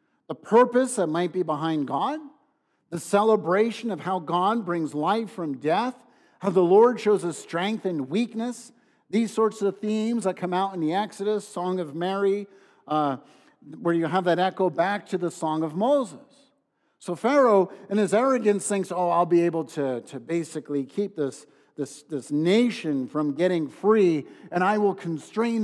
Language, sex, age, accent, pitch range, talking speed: English, male, 50-69, American, 165-210 Hz, 175 wpm